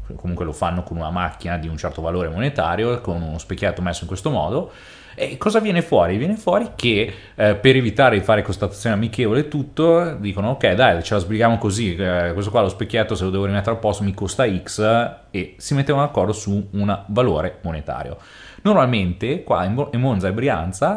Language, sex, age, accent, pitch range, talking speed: Italian, male, 30-49, native, 90-120 Hz, 200 wpm